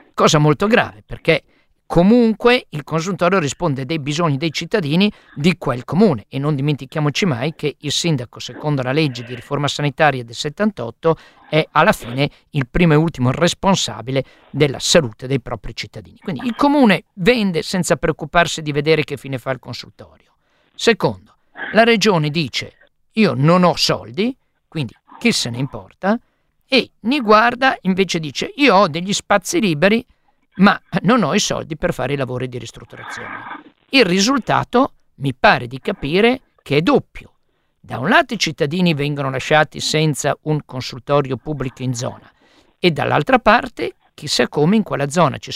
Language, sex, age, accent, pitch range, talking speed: Italian, male, 50-69, native, 135-210 Hz, 160 wpm